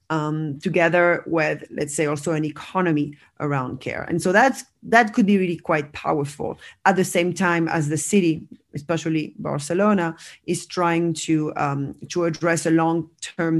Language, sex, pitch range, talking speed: English, female, 155-175 Hz, 160 wpm